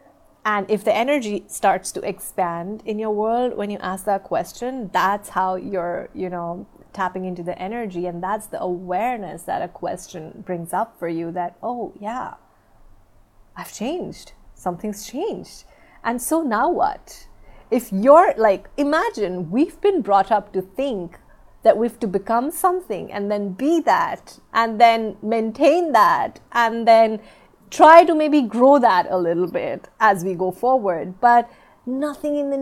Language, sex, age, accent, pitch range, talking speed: English, female, 30-49, Indian, 195-250 Hz, 160 wpm